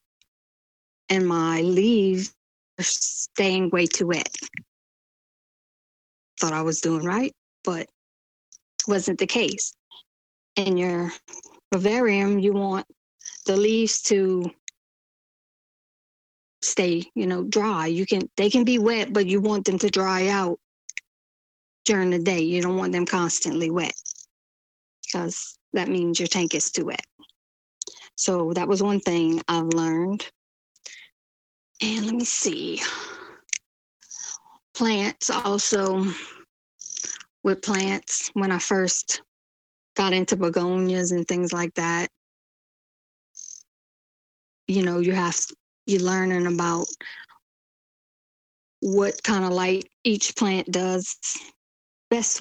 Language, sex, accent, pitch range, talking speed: English, female, American, 175-205 Hz, 115 wpm